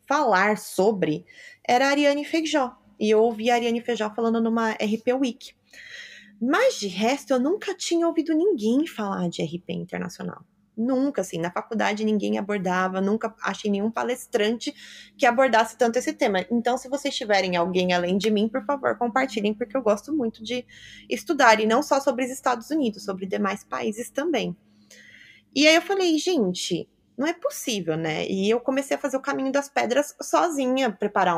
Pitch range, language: 200-285 Hz, Portuguese